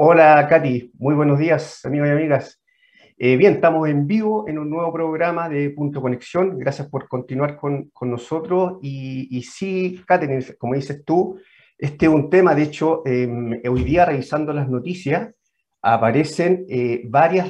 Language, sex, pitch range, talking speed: Spanish, male, 135-165 Hz, 165 wpm